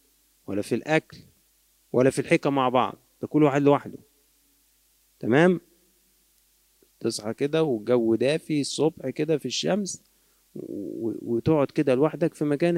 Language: Arabic